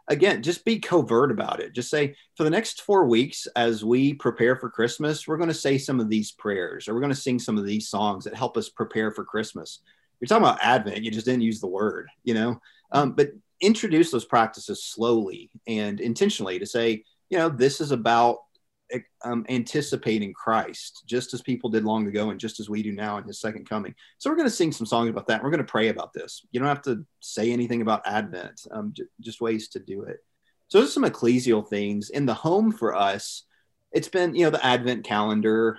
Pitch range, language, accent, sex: 105-125 Hz, English, American, male